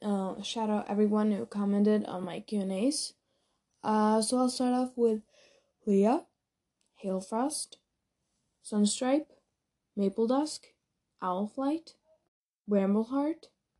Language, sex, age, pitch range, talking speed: English, female, 10-29, 205-255 Hz, 95 wpm